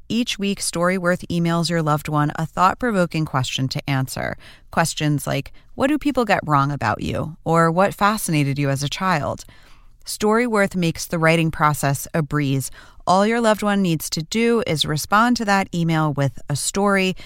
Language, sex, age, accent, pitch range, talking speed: English, female, 30-49, American, 140-185 Hz, 175 wpm